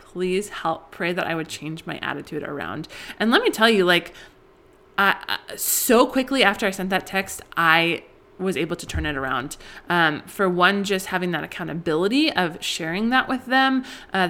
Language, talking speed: English, 190 wpm